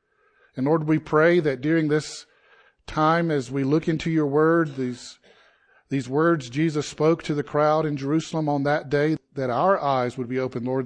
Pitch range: 135-160 Hz